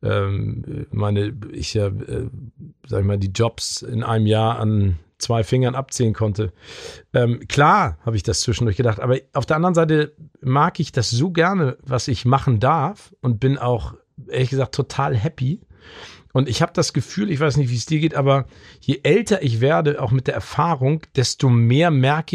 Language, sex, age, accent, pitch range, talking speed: German, male, 40-59, German, 115-150 Hz, 185 wpm